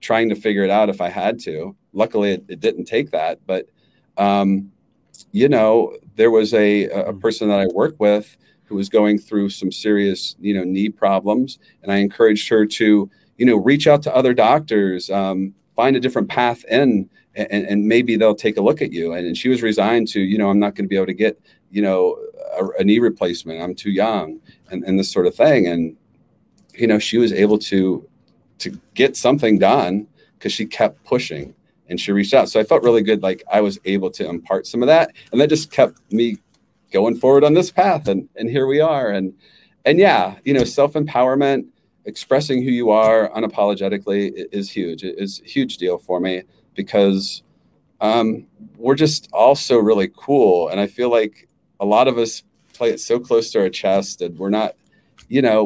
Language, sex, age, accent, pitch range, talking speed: English, male, 40-59, American, 100-125 Hz, 205 wpm